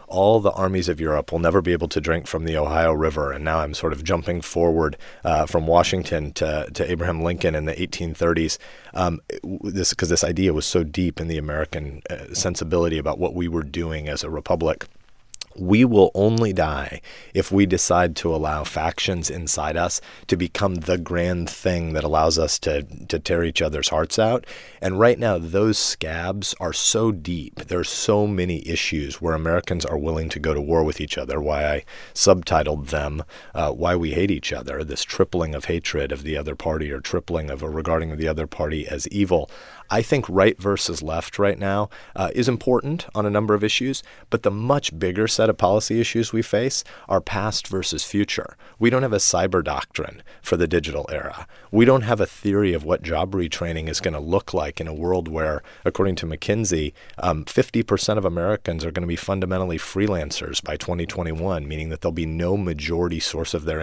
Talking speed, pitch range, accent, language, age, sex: 200 wpm, 80-100 Hz, American, English, 30-49, male